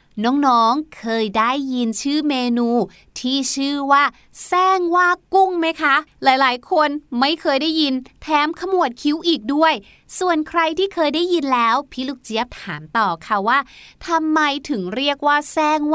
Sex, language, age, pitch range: female, Thai, 20-39, 235-315 Hz